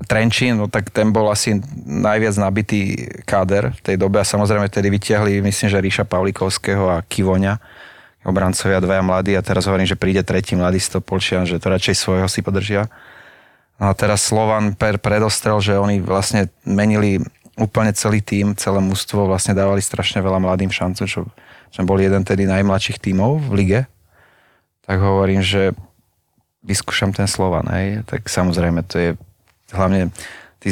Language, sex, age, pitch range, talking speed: Slovak, male, 30-49, 95-105 Hz, 160 wpm